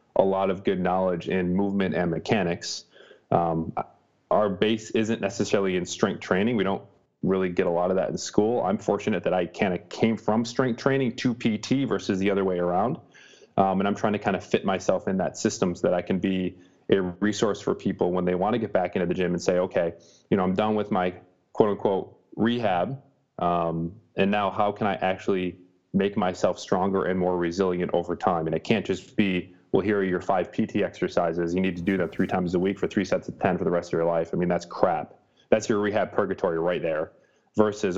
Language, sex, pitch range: English, male, 90-105 Hz